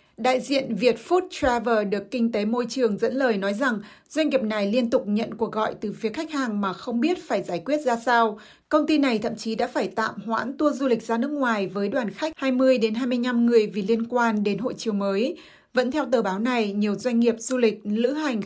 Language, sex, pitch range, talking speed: Vietnamese, female, 215-260 Hz, 235 wpm